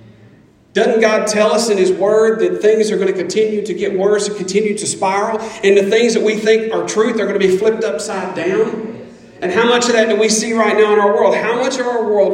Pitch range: 185-215 Hz